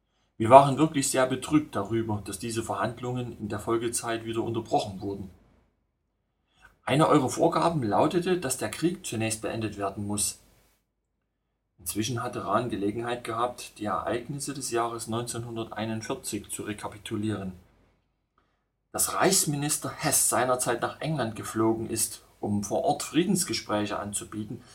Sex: male